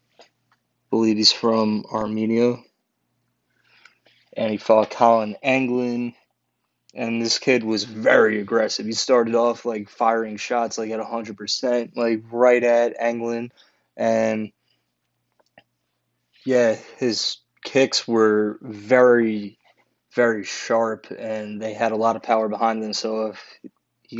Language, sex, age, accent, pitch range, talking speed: English, male, 20-39, American, 105-115 Hz, 120 wpm